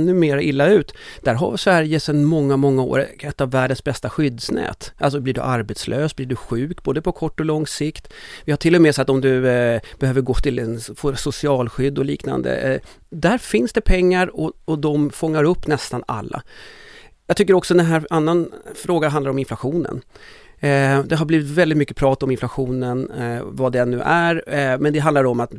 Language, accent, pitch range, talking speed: English, Swedish, 130-160 Hz, 200 wpm